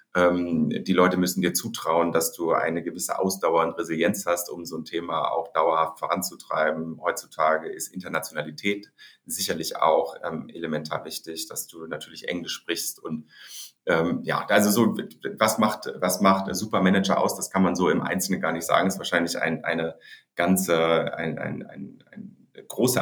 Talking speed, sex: 170 wpm, male